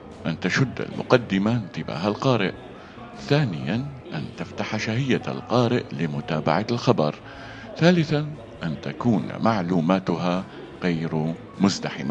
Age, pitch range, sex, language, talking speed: 50-69, 85-115 Hz, male, Arabic, 90 wpm